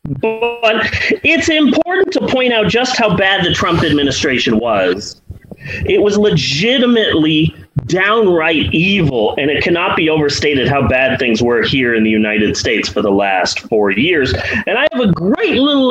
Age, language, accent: 30-49, English, American